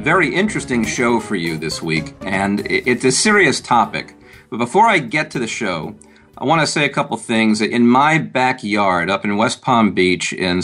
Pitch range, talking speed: 105-130 Hz, 195 wpm